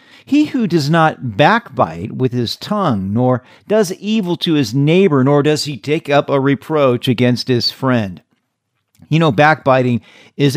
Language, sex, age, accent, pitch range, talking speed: English, male, 50-69, American, 130-195 Hz, 160 wpm